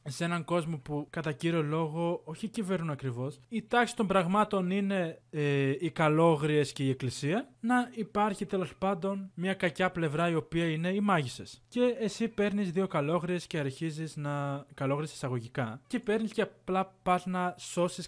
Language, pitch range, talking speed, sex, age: Greek, 135-185 Hz, 165 wpm, male, 20-39